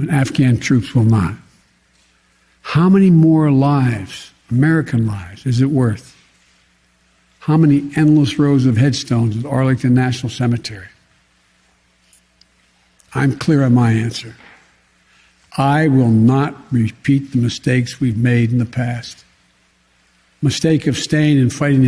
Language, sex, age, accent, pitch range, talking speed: English, male, 60-79, American, 110-155 Hz, 125 wpm